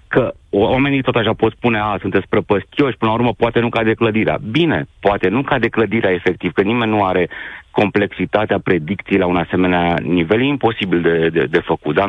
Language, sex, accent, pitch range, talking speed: Romanian, male, native, 90-110 Hz, 205 wpm